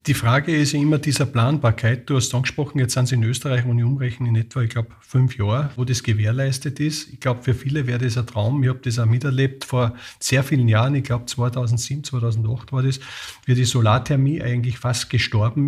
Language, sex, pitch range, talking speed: German, male, 120-145 Hz, 220 wpm